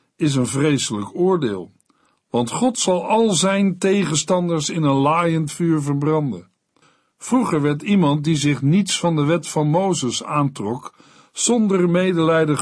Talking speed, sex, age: 140 wpm, male, 50-69